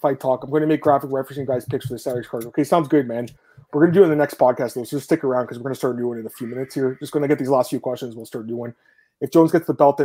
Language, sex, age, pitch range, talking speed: English, male, 30-49, 120-150 Hz, 360 wpm